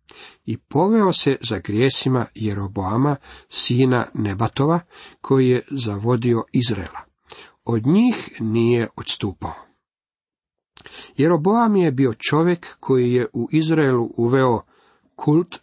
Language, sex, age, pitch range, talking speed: Croatian, male, 50-69, 115-160 Hz, 100 wpm